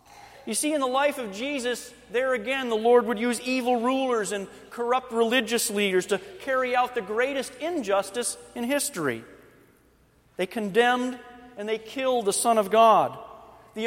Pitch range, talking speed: 205-245 Hz, 160 wpm